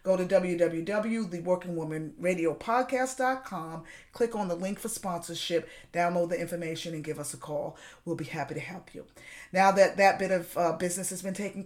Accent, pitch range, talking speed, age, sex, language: American, 175-225 Hz, 165 wpm, 40-59, female, English